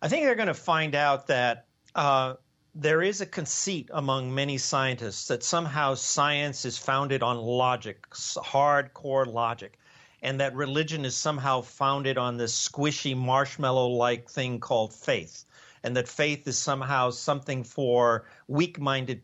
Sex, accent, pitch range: male, American, 125-150 Hz